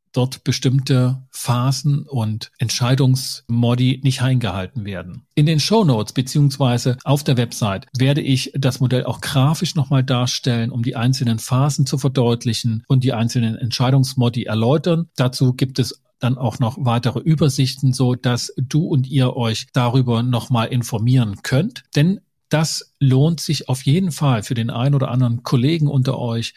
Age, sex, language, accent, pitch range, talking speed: 40-59, male, German, German, 120-140 Hz, 150 wpm